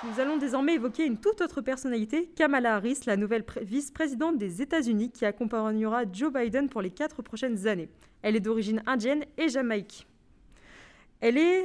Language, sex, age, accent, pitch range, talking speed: French, female, 20-39, French, 215-270 Hz, 170 wpm